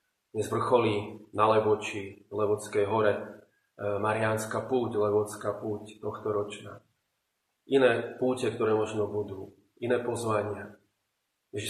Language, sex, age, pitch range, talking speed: Slovak, male, 30-49, 105-120 Hz, 110 wpm